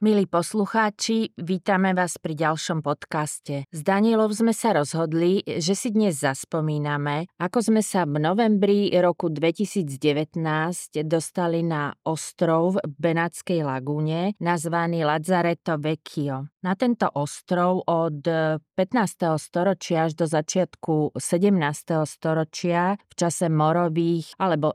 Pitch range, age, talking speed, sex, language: 155-180 Hz, 30-49, 115 wpm, female, Slovak